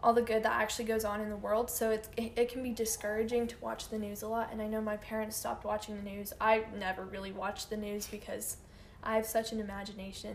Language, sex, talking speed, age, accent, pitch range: English, female, 250 wpm, 10-29, American, 210-240 Hz